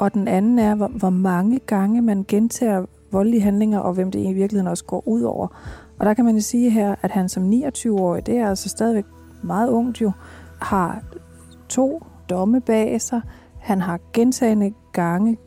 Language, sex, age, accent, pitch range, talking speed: Danish, female, 30-49, native, 185-225 Hz, 180 wpm